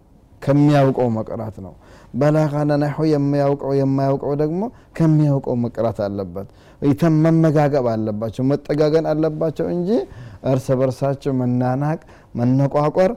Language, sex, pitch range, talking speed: Amharic, male, 115-140 Hz, 90 wpm